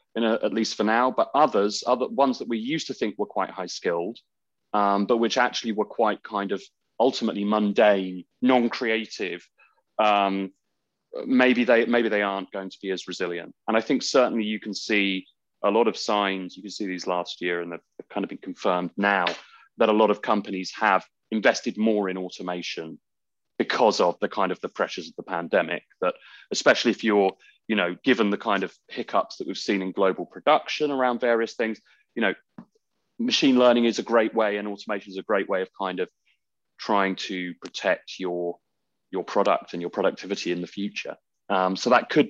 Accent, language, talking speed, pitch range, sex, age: British, English, 195 wpm, 95-115 Hz, male, 30-49